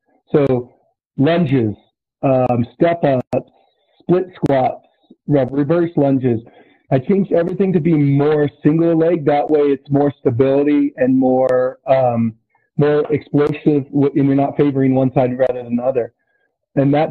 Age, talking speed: 40-59, 135 wpm